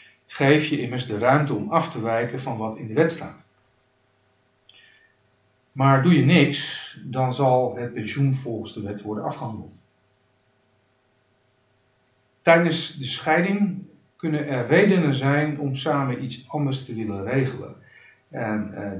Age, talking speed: 50-69, 140 wpm